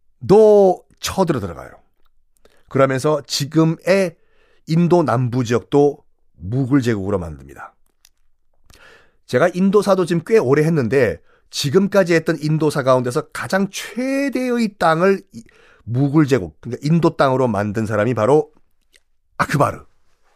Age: 40-59